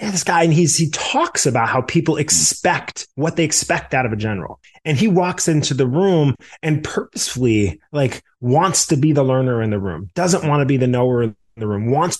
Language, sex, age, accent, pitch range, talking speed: English, male, 30-49, American, 115-155 Hz, 220 wpm